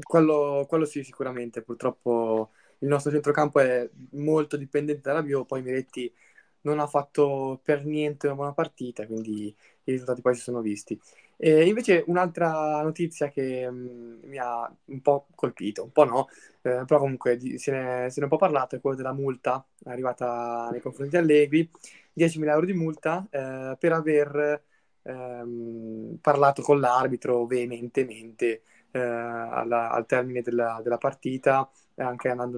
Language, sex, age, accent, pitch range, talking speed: Italian, male, 10-29, native, 120-145 Hz, 160 wpm